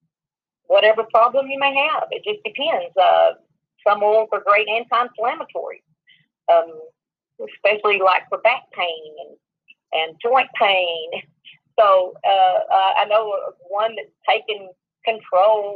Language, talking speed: English, 120 wpm